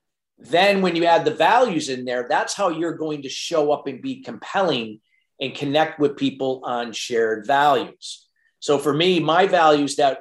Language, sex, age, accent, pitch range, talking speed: English, male, 40-59, American, 130-165 Hz, 180 wpm